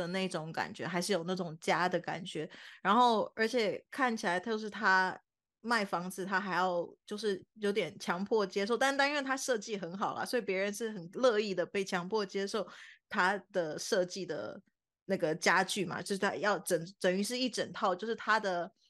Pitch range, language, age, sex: 180-220 Hz, Chinese, 20-39, female